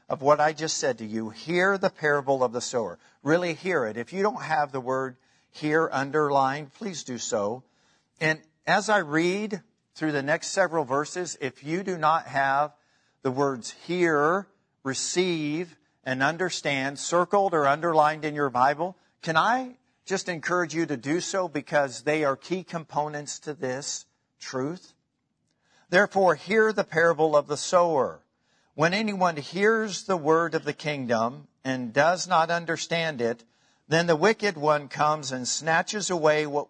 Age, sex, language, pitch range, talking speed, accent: 50-69, male, English, 140-170 Hz, 160 wpm, American